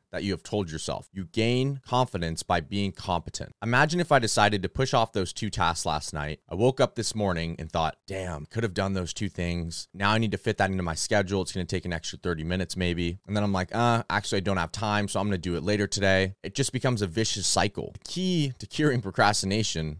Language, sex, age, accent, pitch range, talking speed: English, male, 30-49, American, 90-115 Hz, 245 wpm